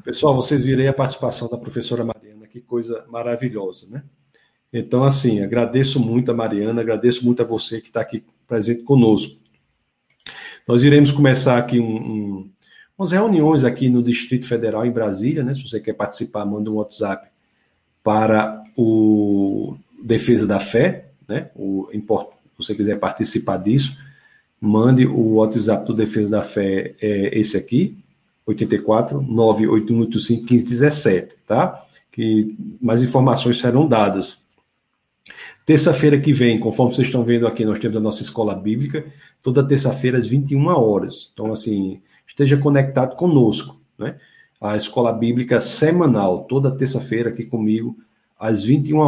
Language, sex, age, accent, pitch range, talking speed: Portuguese, male, 50-69, Brazilian, 110-135 Hz, 140 wpm